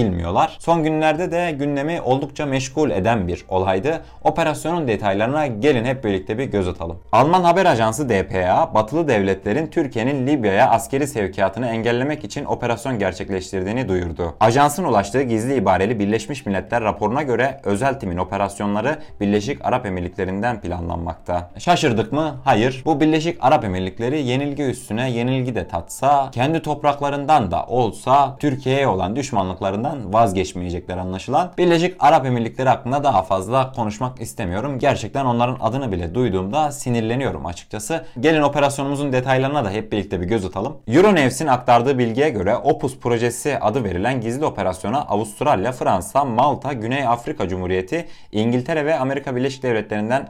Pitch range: 100-140 Hz